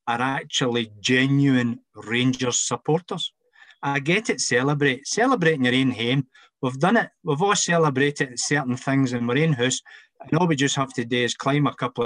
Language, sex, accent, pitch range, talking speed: English, male, British, 120-145 Hz, 180 wpm